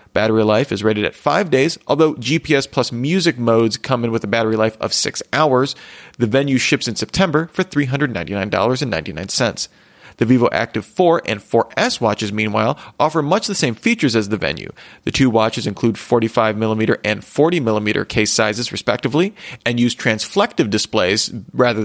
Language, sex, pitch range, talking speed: English, male, 110-145 Hz, 160 wpm